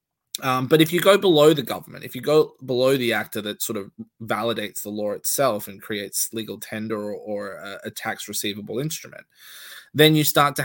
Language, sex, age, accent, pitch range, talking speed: English, male, 20-39, Australian, 110-140 Hz, 205 wpm